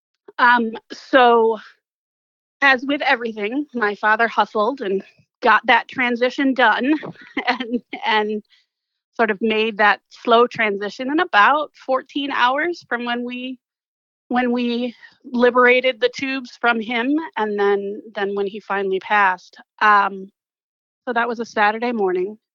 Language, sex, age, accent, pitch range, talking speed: English, female, 30-49, American, 205-245 Hz, 130 wpm